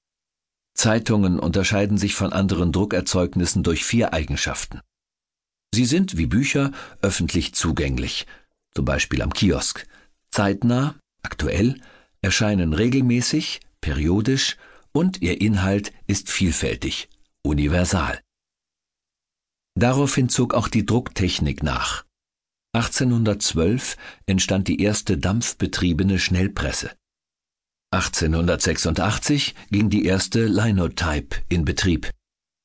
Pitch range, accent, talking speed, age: 80-105 Hz, German, 90 wpm, 50-69